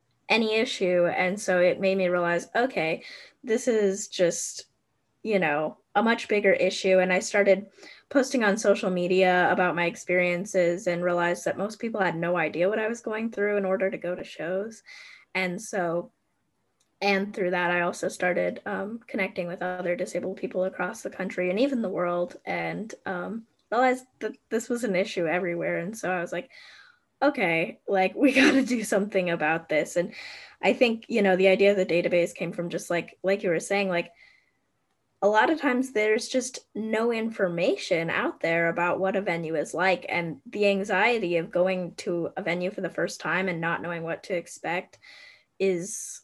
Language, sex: English, female